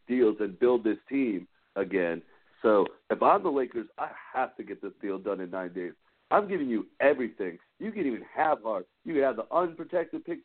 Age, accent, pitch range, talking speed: 50-69, American, 100-155 Hz, 205 wpm